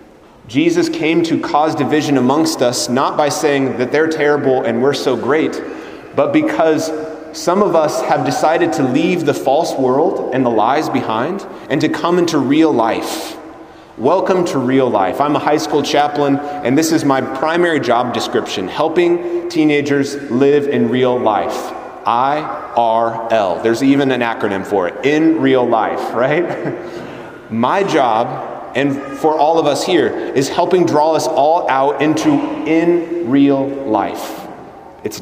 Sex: male